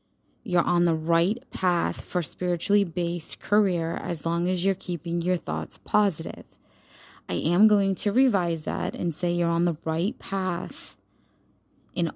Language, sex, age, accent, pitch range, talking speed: English, female, 20-39, American, 165-195 Hz, 155 wpm